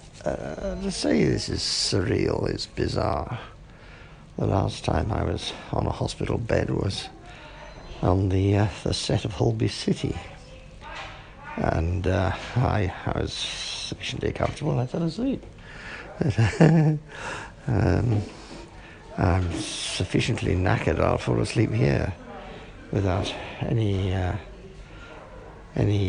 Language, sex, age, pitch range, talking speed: English, male, 60-79, 100-145 Hz, 110 wpm